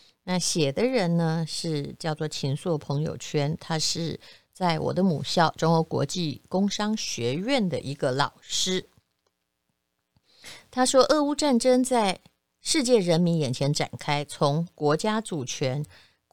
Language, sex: Chinese, female